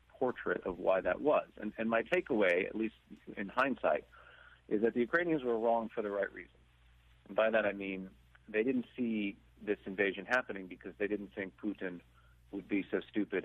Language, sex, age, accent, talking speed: English, male, 40-59, American, 190 wpm